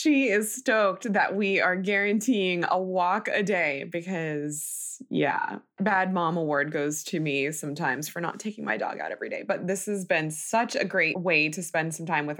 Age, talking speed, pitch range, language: 20-39, 200 wpm, 155-210 Hz, English